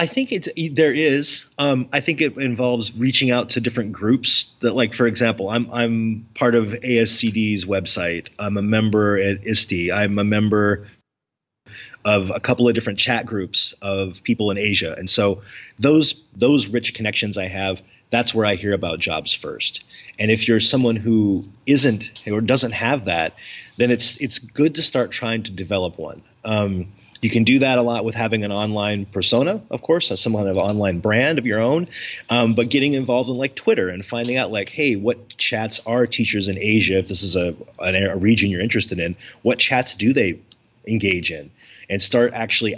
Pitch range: 100-125 Hz